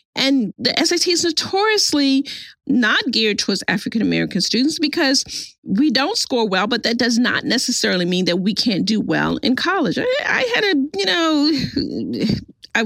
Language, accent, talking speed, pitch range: English, American, 160 wpm, 205-280 Hz